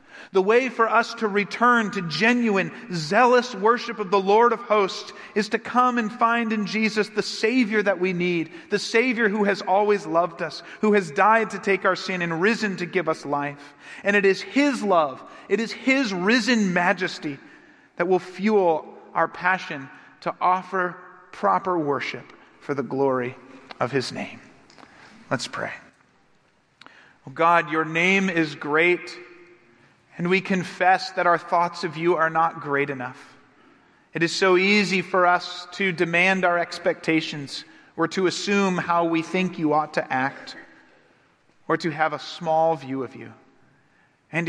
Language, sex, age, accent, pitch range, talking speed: English, male, 40-59, American, 160-195 Hz, 165 wpm